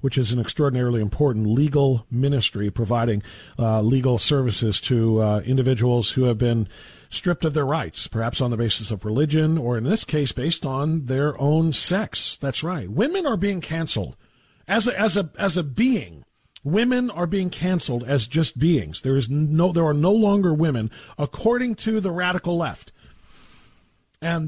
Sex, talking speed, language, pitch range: male, 170 wpm, English, 125-175 Hz